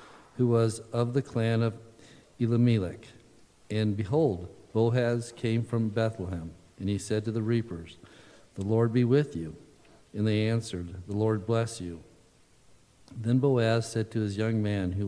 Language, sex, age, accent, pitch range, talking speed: English, male, 50-69, American, 105-125 Hz, 155 wpm